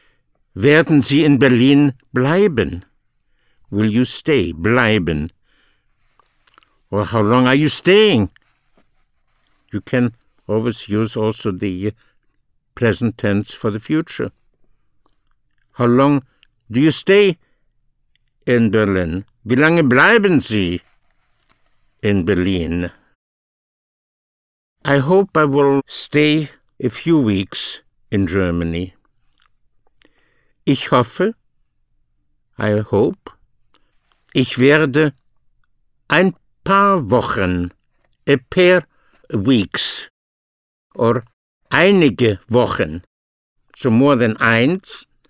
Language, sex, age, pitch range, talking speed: English, male, 60-79, 100-145 Hz, 90 wpm